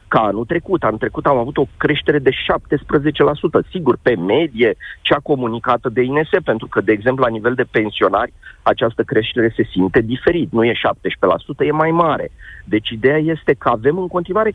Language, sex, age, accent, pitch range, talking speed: Romanian, male, 40-59, native, 125-180 Hz, 180 wpm